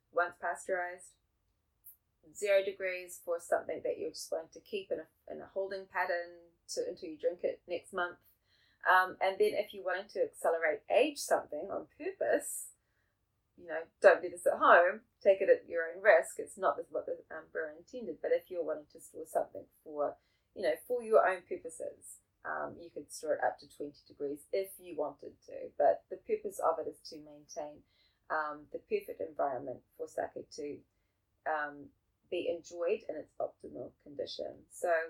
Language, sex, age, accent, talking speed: English, female, 20-39, Australian, 185 wpm